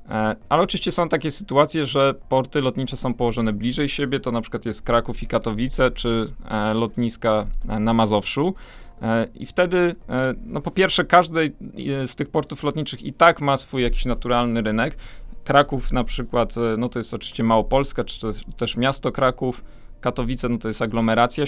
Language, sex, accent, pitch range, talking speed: Polish, male, native, 115-145 Hz, 160 wpm